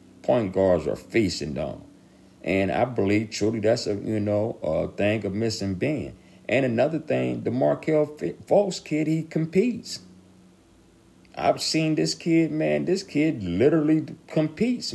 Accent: American